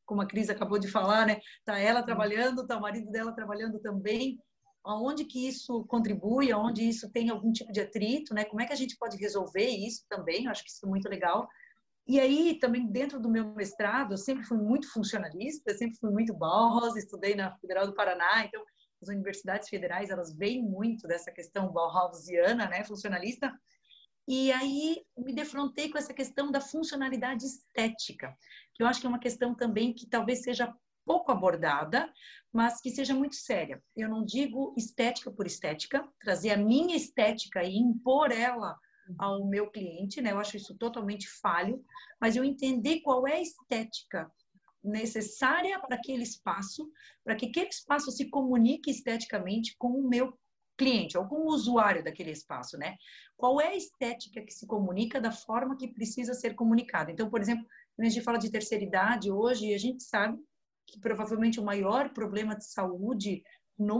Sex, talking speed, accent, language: female, 175 wpm, Brazilian, Portuguese